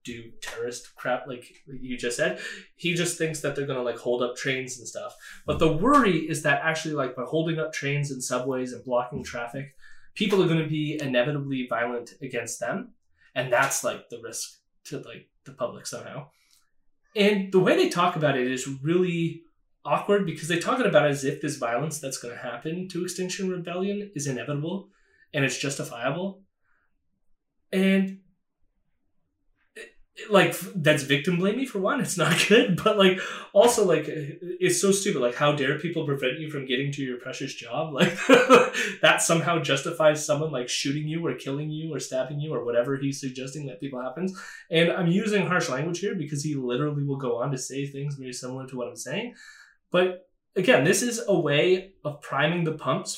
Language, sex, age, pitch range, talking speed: English, male, 20-39, 135-180 Hz, 185 wpm